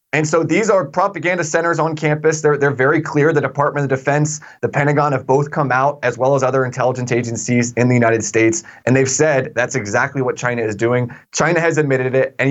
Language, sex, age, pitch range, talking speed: English, male, 20-39, 130-150 Hz, 220 wpm